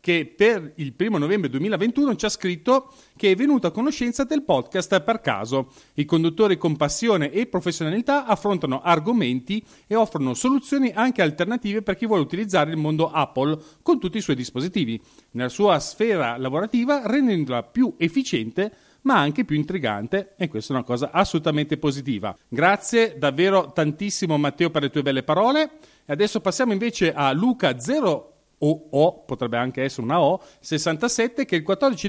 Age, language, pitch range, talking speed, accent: 40-59, Italian, 150-220 Hz, 165 wpm, native